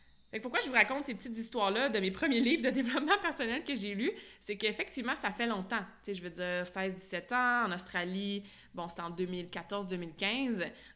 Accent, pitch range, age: Canadian, 190-245 Hz, 20-39